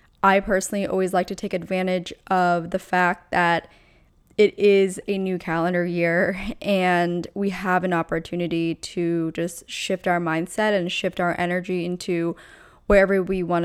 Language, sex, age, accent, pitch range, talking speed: English, female, 20-39, American, 170-200 Hz, 155 wpm